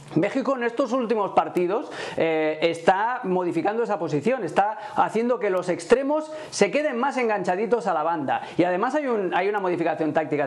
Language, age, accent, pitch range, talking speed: Spanish, 40-59, Spanish, 170-230 Hz, 170 wpm